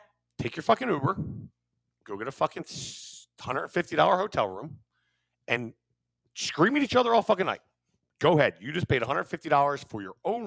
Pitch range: 105-135 Hz